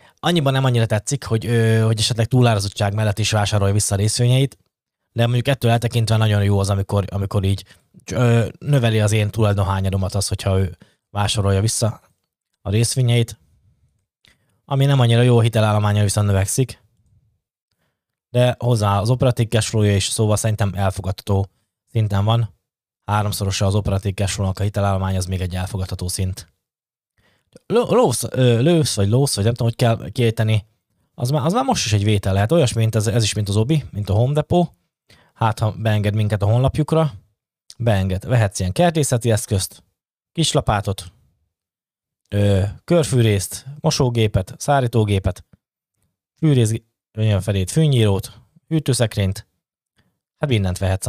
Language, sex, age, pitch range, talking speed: Hungarian, male, 20-39, 100-120 Hz, 135 wpm